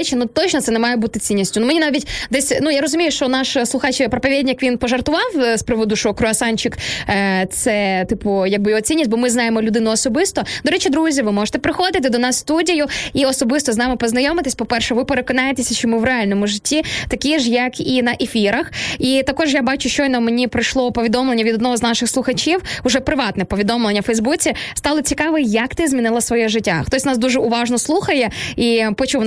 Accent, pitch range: native, 230-275 Hz